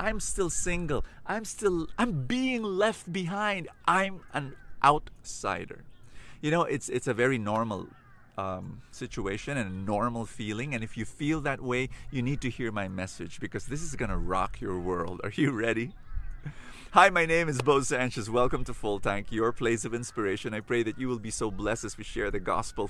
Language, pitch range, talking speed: English, 105-150 Hz, 195 wpm